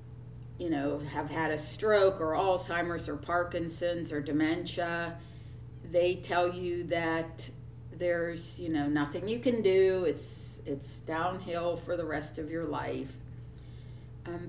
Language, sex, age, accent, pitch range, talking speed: English, female, 50-69, American, 135-180 Hz, 135 wpm